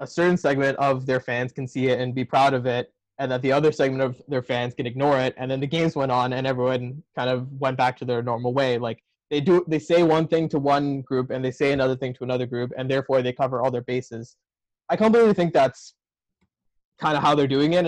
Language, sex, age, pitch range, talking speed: English, male, 20-39, 125-155 Hz, 255 wpm